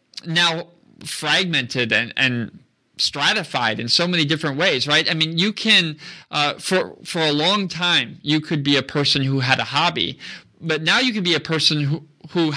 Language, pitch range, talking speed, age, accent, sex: English, 135-170 Hz, 185 wpm, 20-39, American, male